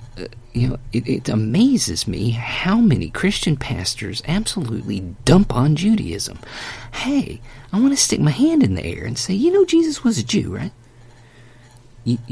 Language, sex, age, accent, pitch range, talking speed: English, male, 50-69, American, 120-130 Hz, 170 wpm